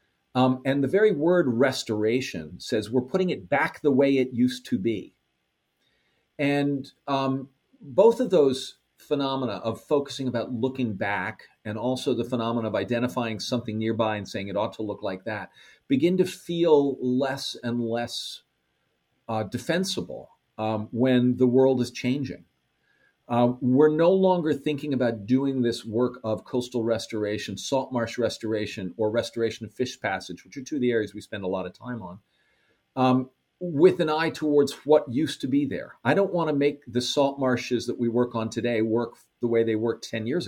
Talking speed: 180 wpm